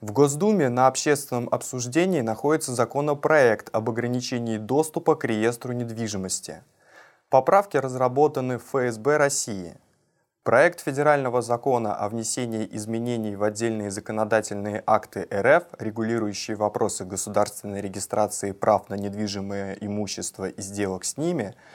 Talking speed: 115 wpm